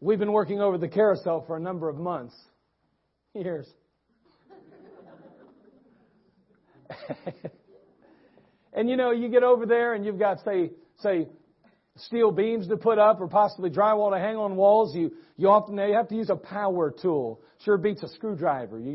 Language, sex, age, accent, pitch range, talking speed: English, male, 50-69, American, 160-215 Hz, 160 wpm